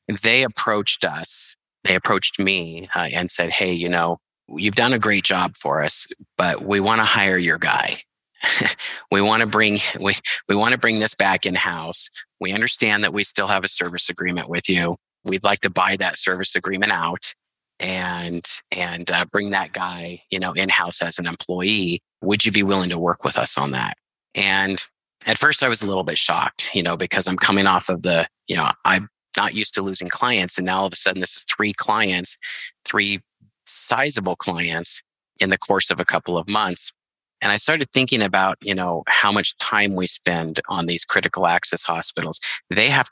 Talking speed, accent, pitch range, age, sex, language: 205 wpm, American, 90-105 Hz, 30-49, male, English